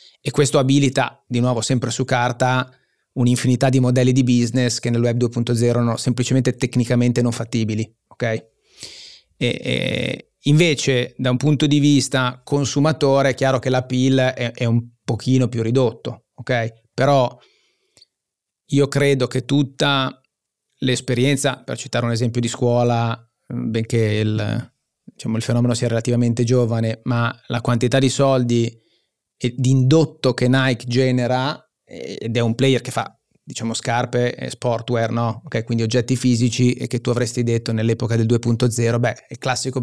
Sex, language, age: male, Italian, 30-49